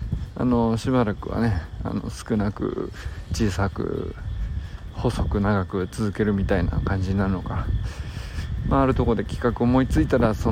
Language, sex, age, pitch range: Japanese, male, 50-69, 95-130 Hz